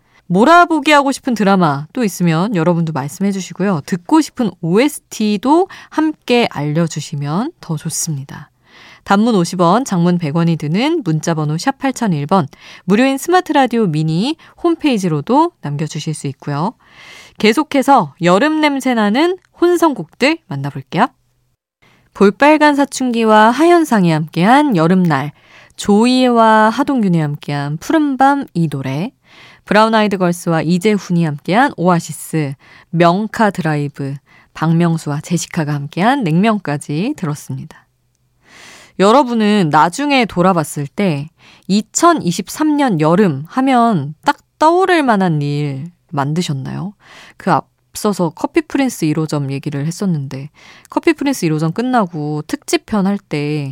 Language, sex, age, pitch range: Korean, female, 20-39, 155-250 Hz